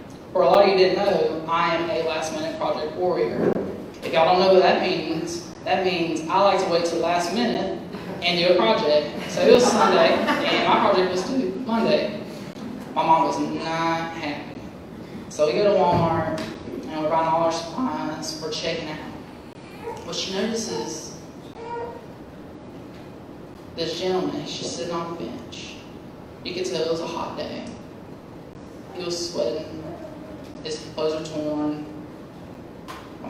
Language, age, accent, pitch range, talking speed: English, 20-39, American, 160-190 Hz, 160 wpm